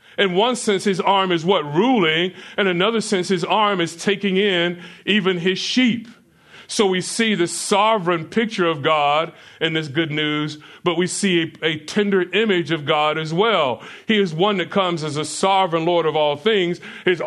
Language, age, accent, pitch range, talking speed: English, 40-59, American, 155-195 Hz, 190 wpm